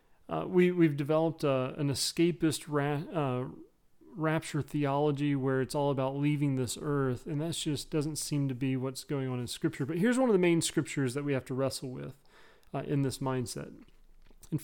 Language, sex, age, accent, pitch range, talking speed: English, male, 40-59, American, 135-170 Hz, 195 wpm